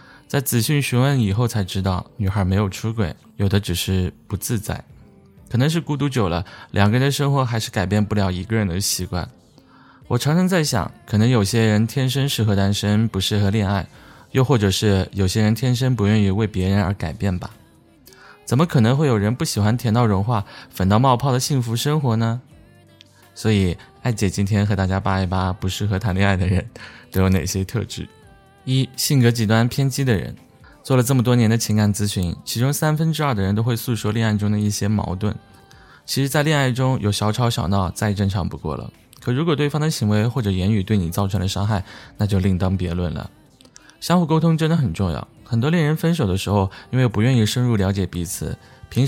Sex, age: male, 20-39